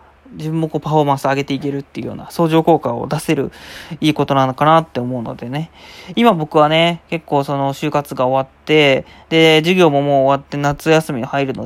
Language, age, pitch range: Japanese, 20-39, 135-165 Hz